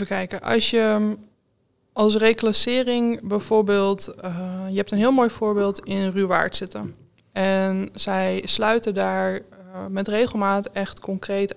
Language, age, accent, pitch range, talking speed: Dutch, 20-39, Dutch, 190-220 Hz, 130 wpm